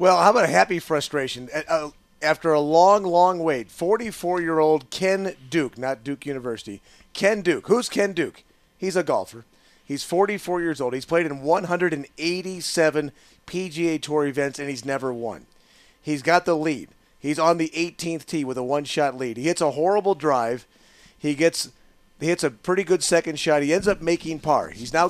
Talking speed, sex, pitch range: 175 wpm, male, 150-185 Hz